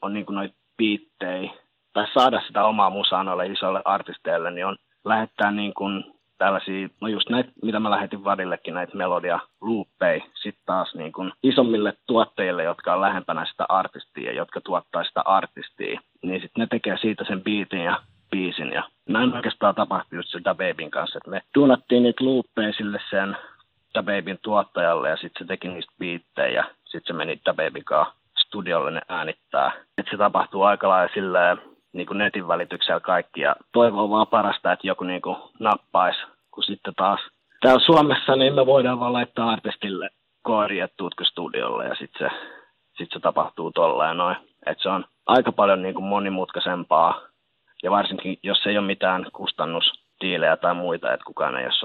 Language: Finnish